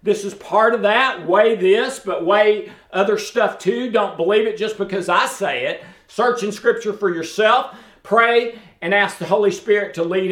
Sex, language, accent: male, English, American